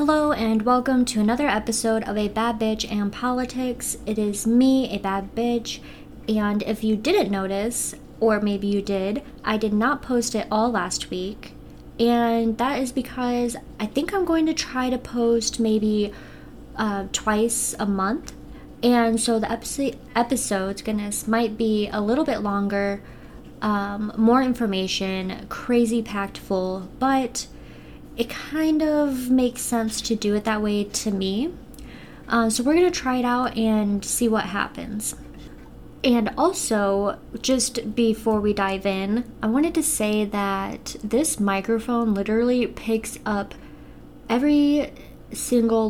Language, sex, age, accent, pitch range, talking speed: English, female, 20-39, American, 200-240 Hz, 150 wpm